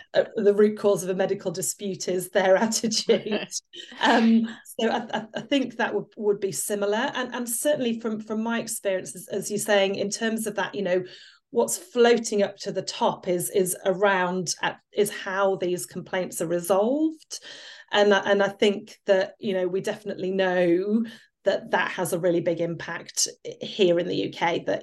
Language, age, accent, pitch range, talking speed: English, 30-49, British, 180-210 Hz, 180 wpm